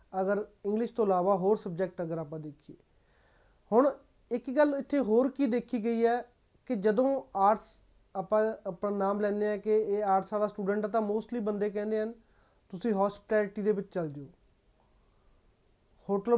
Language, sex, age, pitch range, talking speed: Punjabi, male, 30-49, 200-230 Hz, 165 wpm